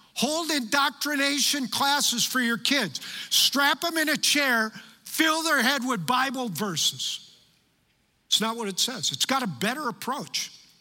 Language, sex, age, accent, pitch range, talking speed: English, male, 50-69, American, 205-280 Hz, 150 wpm